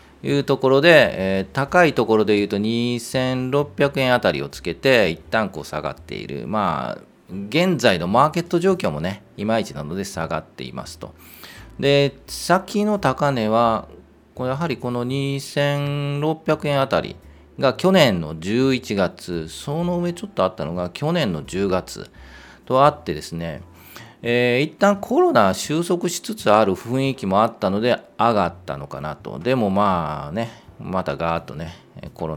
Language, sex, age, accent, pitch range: Japanese, male, 40-59, native, 90-145 Hz